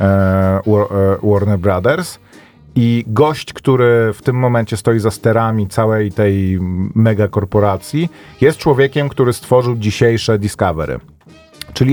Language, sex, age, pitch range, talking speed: Polish, male, 40-59, 100-120 Hz, 105 wpm